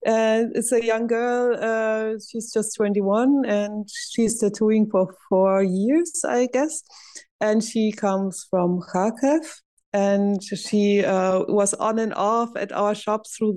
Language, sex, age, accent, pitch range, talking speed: English, female, 20-39, German, 180-220 Hz, 145 wpm